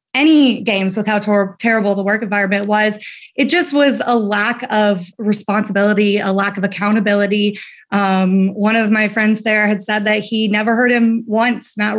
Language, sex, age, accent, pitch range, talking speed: English, female, 30-49, American, 205-240 Hz, 175 wpm